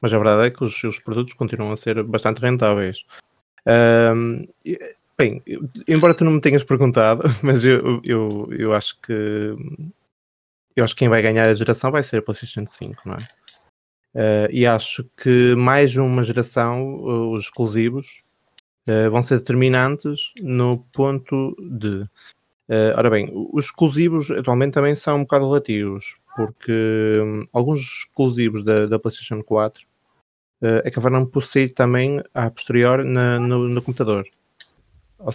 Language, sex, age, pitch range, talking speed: Portuguese, male, 20-39, 110-135 Hz, 150 wpm